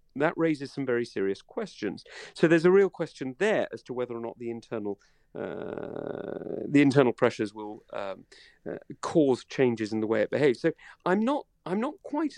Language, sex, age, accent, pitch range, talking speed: English, male, 40-59, British, 110-165 Hz, 190 wpm